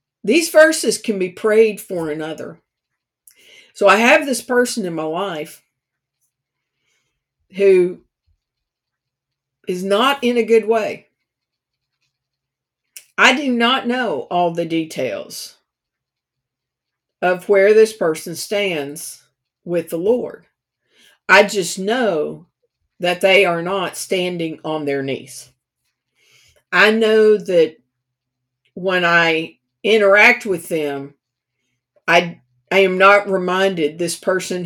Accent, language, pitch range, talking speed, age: American, English, 145-210 Hz, 110 wpm, 50-69